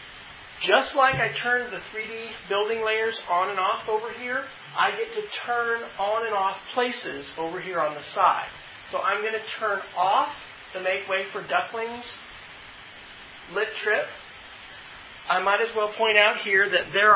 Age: 40-59